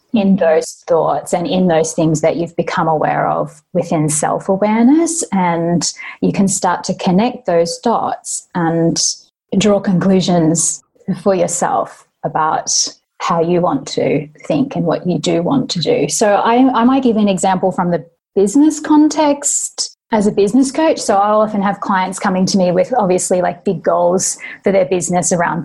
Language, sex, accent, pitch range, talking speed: English, female, Australian, 170-205 Hz, 170 wpm